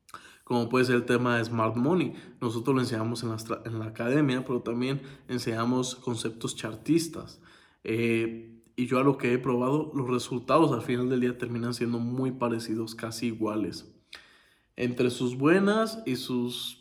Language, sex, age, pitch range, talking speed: Spanish, male, 20-39, 115-135 Hz, 165 wpm